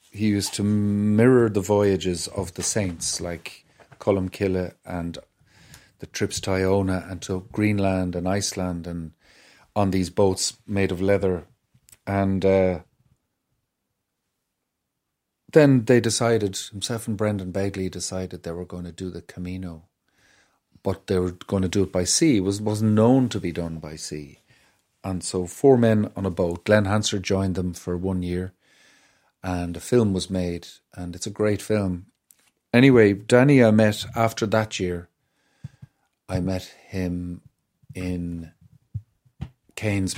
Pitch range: 90-105 Hz